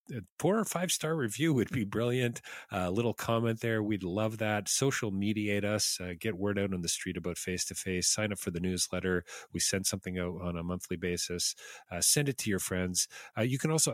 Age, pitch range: 40-59, 85-105 Hz